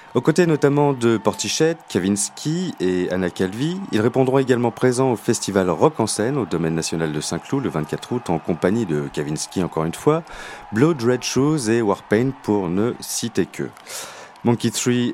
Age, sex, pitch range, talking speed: 30-49, male, 90-130 Hz, 175 wpm